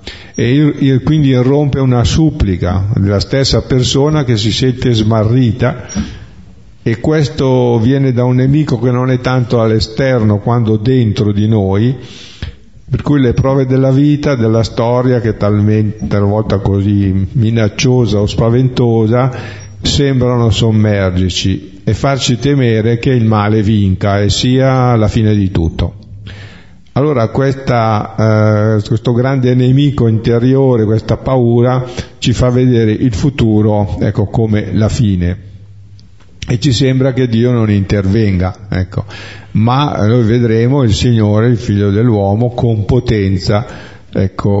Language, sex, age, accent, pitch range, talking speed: Italian, male, 50-69, native, 100-125 Hz, 130 wpm